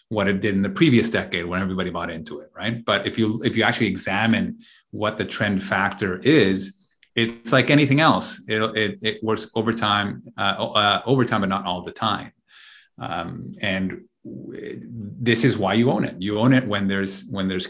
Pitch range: 95-120 Hz